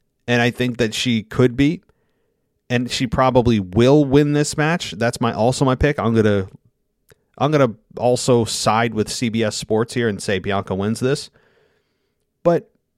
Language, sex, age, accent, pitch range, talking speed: English, male, 30-49, American, 100-130 Hz, 170 wpm